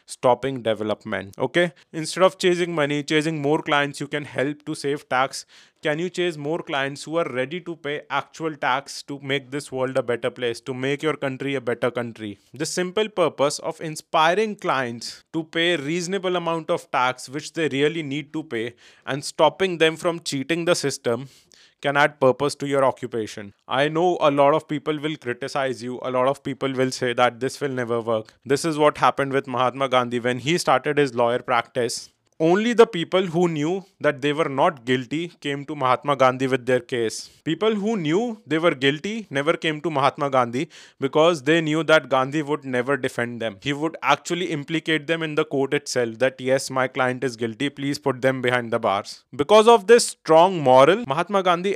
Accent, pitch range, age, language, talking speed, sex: Indian, 130-165 Hz, 20-39, English, 200 wpm, male